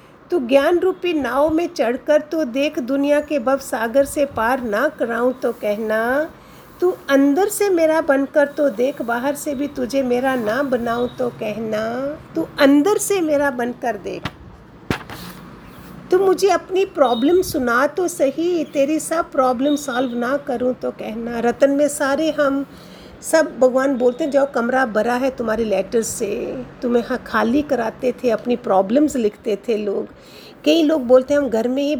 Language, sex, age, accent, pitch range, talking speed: Hindi, female, 50-69, native, 240-295 Hz, 165 wpm